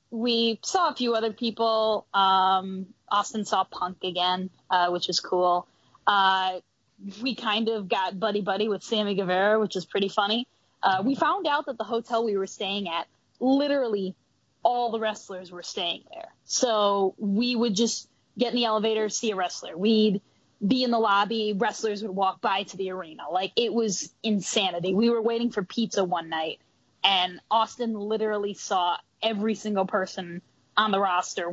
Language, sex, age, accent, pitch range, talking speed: English, female, 10-29, American, 185-225 Hz, 170 wpm